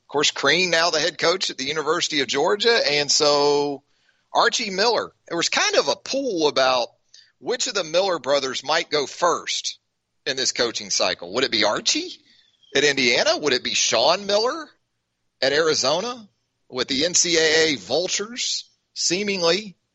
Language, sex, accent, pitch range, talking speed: English, male, American, 145-210 Hz, 160 wpm